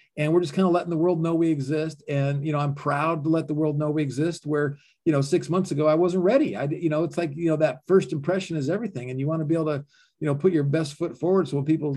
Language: English